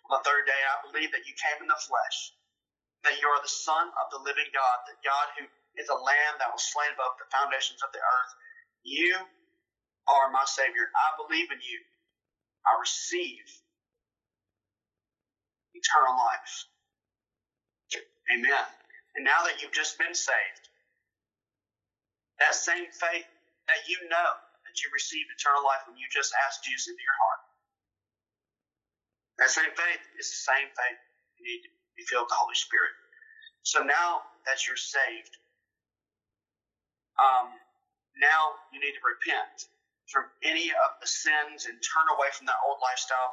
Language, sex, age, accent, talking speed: English, male, 30-49, American, 160 wpm